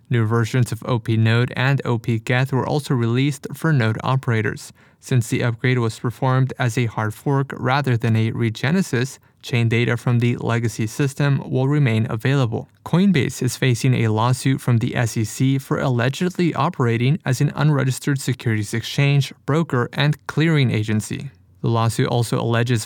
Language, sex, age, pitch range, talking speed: English, male, 20-39, 115-140 Hz, 150 wpm